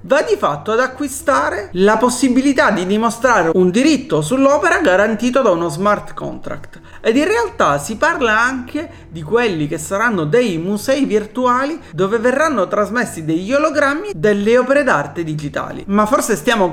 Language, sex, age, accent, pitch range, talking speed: Italian, male, 30-49, native, 180-260 Hz, 150 wpm